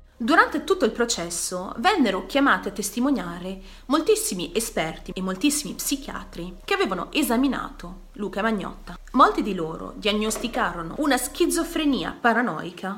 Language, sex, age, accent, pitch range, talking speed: Italian, female, 30-49, native, 190-270 Hz, 115 wpm